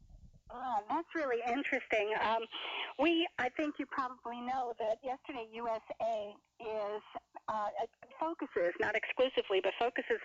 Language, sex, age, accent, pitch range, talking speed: English, female, 40-59, American, 195-285 Hz, 125 wpm